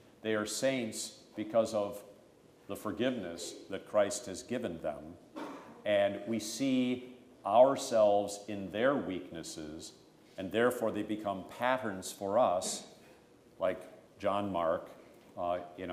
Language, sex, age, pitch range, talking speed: English, male, 50-69, 100-125 Hz, 115 wpm